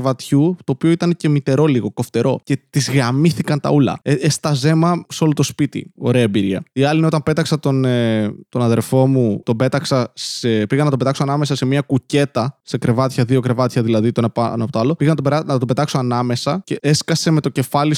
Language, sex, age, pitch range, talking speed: Greek, male, 20-39, 130-170 Hz, 210 wpm